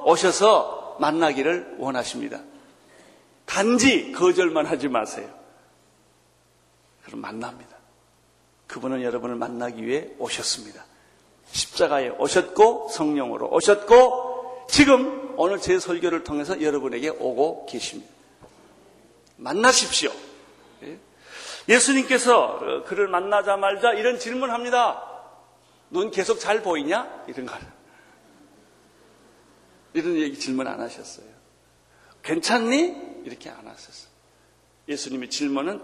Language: Korean